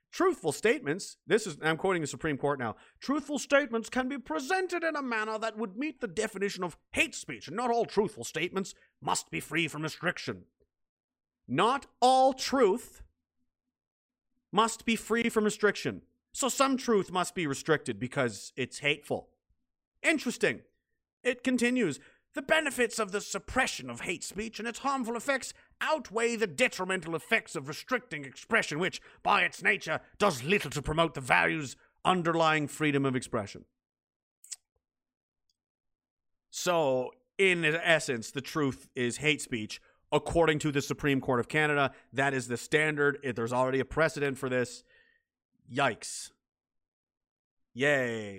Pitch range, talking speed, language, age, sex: 140-235 Hz, 145 wpm, English, 40-59, male